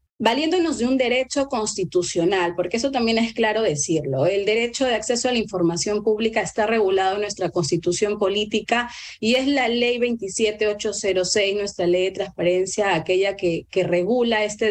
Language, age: Spanish, 30-49